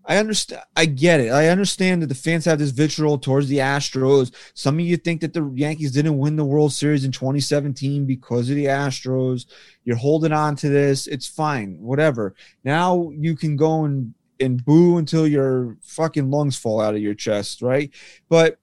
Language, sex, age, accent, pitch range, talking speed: English, male, 30-49, American, 150-205 Hz, 195 wpm